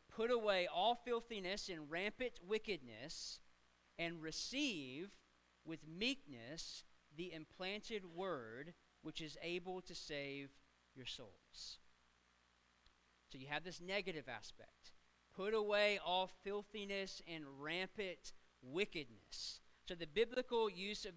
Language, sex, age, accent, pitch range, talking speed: English, male, 40-59, American, 155-205 Hz, 110 wpm